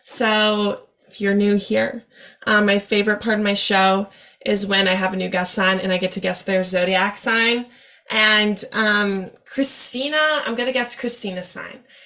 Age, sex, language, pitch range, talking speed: 10-29, female, English, 200-260 Hz, 180 wpm